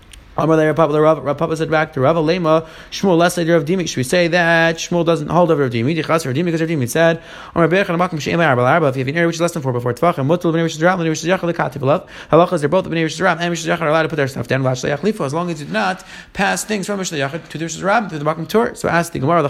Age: 30-49